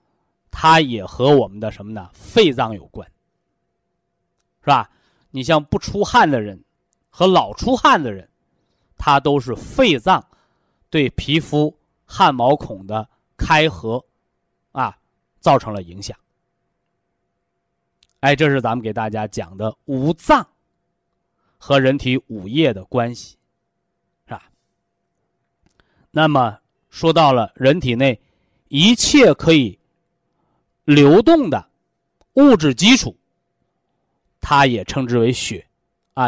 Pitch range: 115-170 Hz